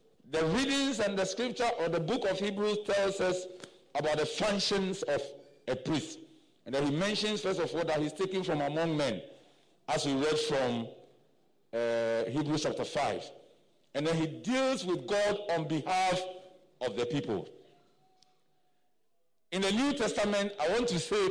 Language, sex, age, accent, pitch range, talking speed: English, male, 50-69, Nigerian, 160-230 Hz, 165 wpm